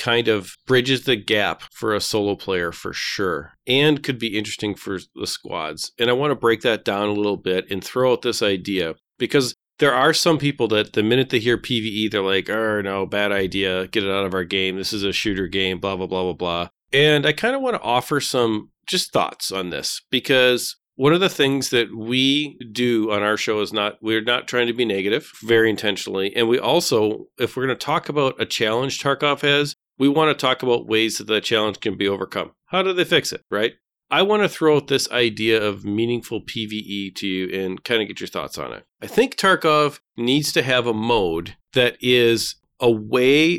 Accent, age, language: American, 40-59, English